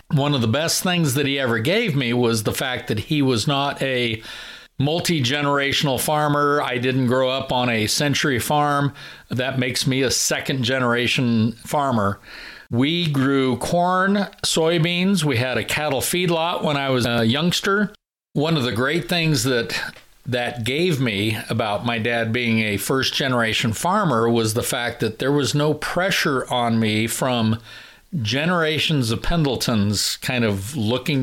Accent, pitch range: American, 120-150 Hz